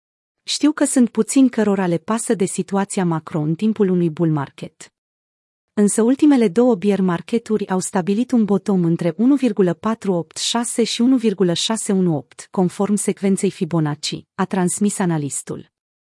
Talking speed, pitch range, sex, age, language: 120 wpm, 180-230 Hz, female, 30-49, Romanian